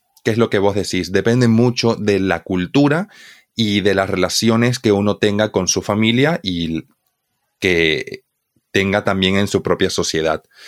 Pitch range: 100-120 Hz